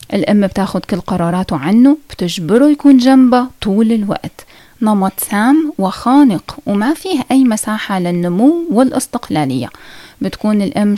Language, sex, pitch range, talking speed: Arabic, female, 185-265 Hz, 115 wpm